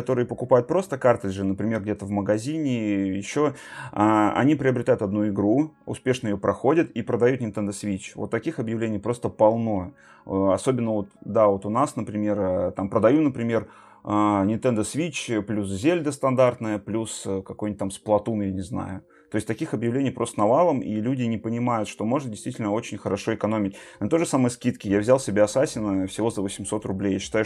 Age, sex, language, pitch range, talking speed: 30-49, male, Russian, 100-125 Hz, 170 wpm